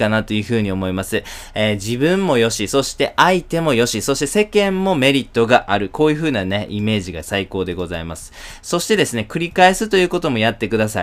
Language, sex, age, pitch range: Japanese, male, 20-39, 105-140 Hz